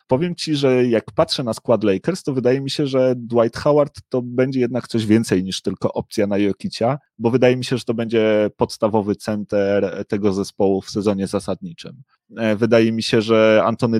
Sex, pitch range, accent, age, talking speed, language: male, 105-120 Hz, native, 30-49, 190 wpm, Polish